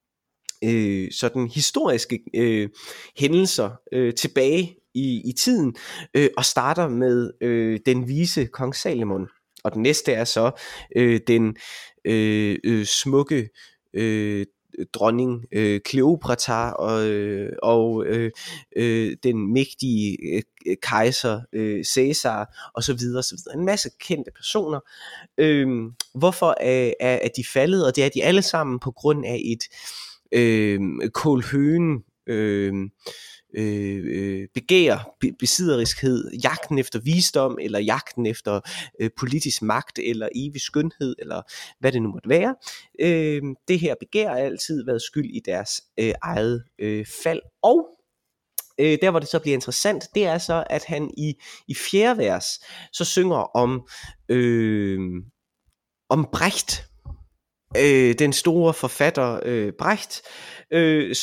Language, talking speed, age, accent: Danish, 130 wpm, 20-39, native